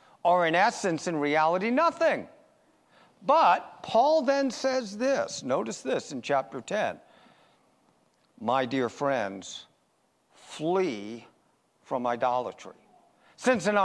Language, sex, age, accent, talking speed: English, male, 50-69, American, 105 wpm